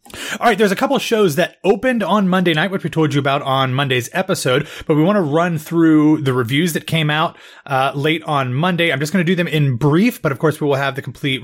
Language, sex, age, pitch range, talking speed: English, male, 30-49, 130-165 Hz, 270 wpm